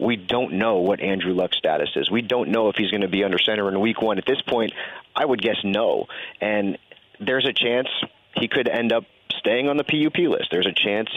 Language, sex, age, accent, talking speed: English, male, 40-59, American, 235 wpm